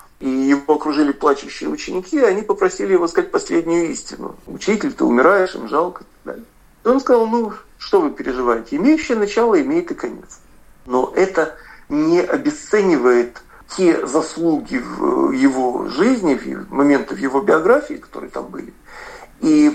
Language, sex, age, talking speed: Russian, male, 50-69, 140 wpm